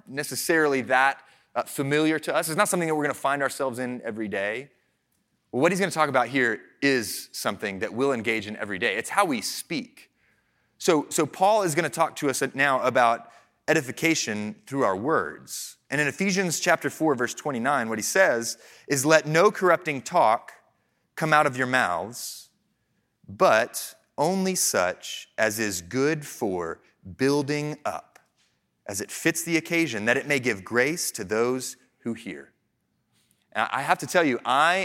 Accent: American